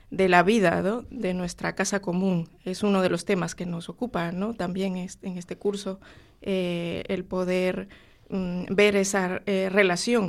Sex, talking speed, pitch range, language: female, 170 wpm, 180-205 Hz, Spanish